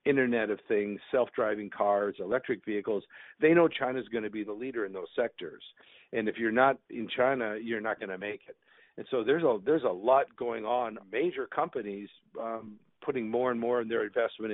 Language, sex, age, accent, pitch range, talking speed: English, male, 50-69, American, 105-125 Hz, 200 wpm